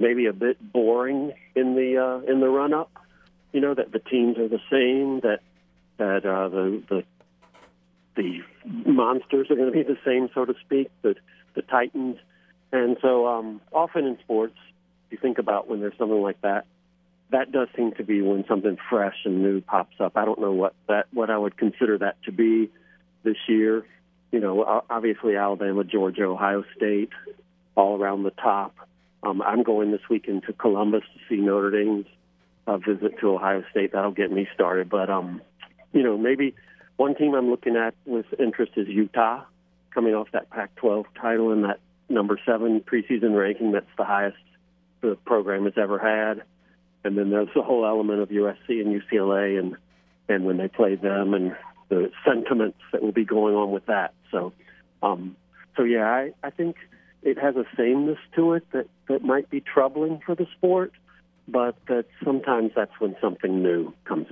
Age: 50-69